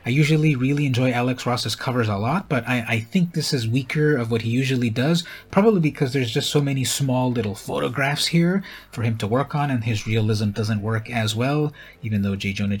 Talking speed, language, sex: 220 wpm, English, male